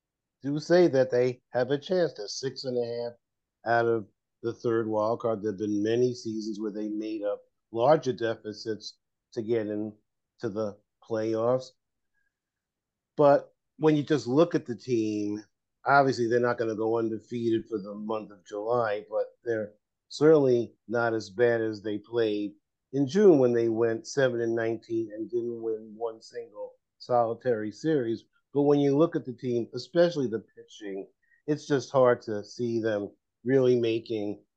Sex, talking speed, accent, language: male, 165 wpm, American, English